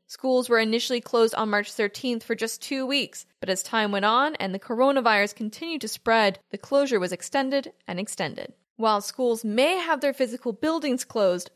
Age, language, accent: 10-29, English, American